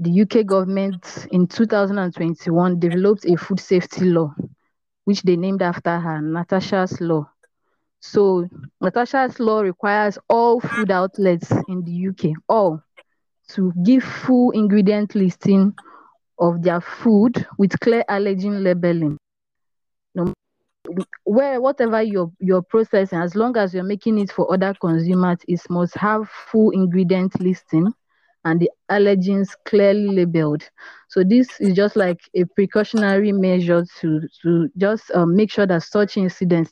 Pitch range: 170-200 Hz